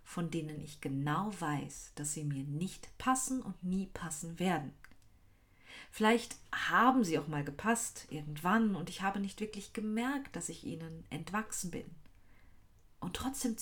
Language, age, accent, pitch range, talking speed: German, 40-59, German, 135-210 Hz, 150 wpm